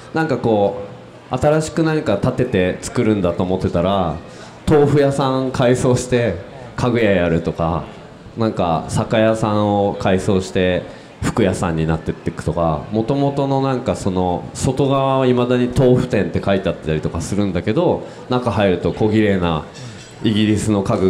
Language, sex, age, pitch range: Japanese, male, 20-39, 90-120 Hz